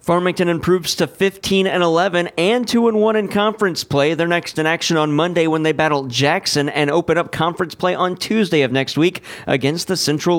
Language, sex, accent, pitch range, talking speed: English, male, American, 145-175 Hz, 195 wpm